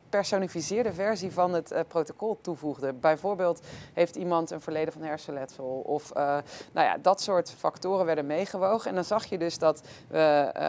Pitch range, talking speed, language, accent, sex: 150-185 Hz, 175 wpm, Dutch, Dutch, female